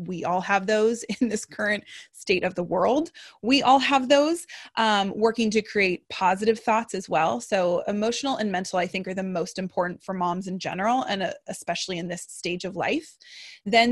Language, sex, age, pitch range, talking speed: English, female, 20-39, 190-245 Hz, 200 wpm